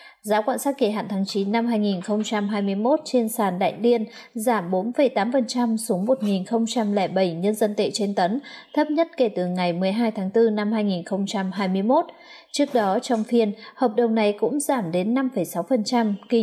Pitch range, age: 205-250 Hz, 20-39